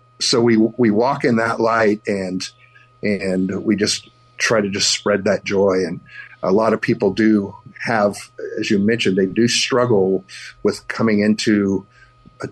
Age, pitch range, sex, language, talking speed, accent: 50-69, 105-125 Hz, male, English, 165 wpm, American